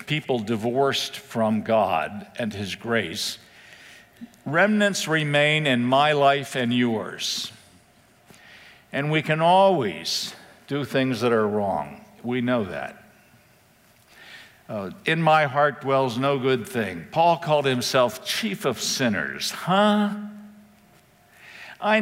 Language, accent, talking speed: English, American, 115 wpm